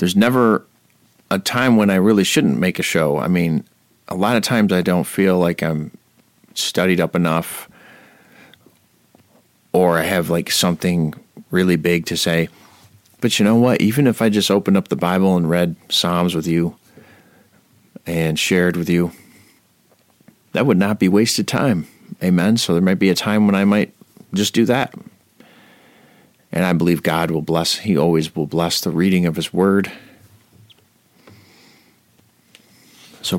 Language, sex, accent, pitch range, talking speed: English, male, American, 85-105 Hz, 160 wpm